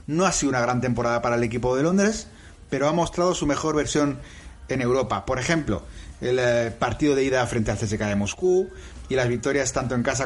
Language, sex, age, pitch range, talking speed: Spanish, male, 30-49, 120-160 Hz, 210 wpm